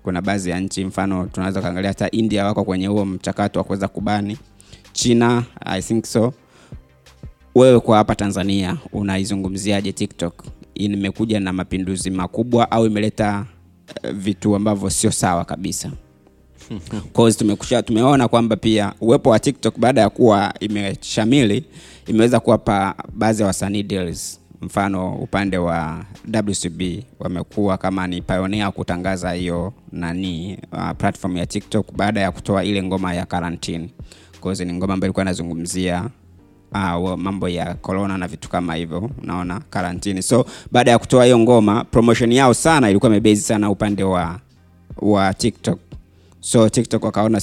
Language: Swahili